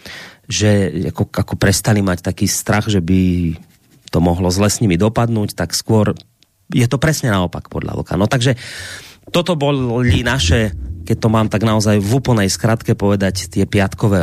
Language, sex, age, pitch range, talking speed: Slovak, male, 30-49, 95-130 Hz, 160 wpm